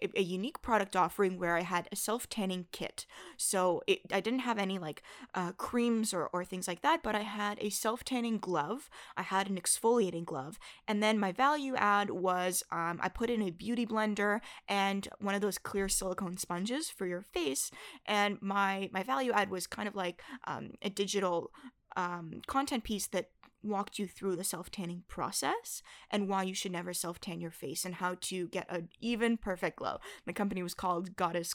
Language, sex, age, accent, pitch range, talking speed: English, female, 20-39, American, 185-225 Hz, 200 wpm